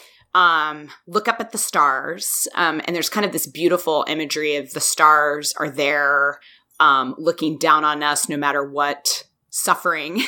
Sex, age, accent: female, 30-49, American